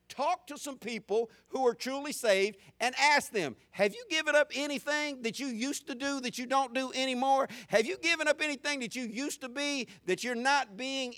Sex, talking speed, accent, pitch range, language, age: male, 215 wpm, American, 195-270 Hz, English, 50-69